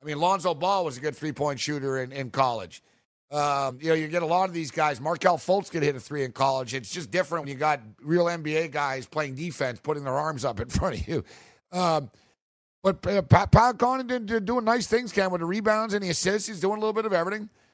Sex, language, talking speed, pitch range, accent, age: male, English, 240 wpm, 145-185 Hz, American, 50-69